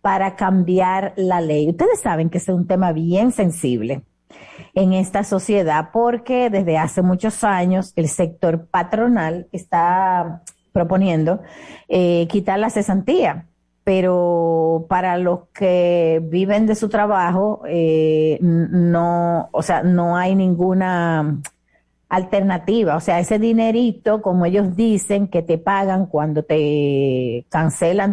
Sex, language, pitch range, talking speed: female, Spanish, 170-205 Hz, 120 wpm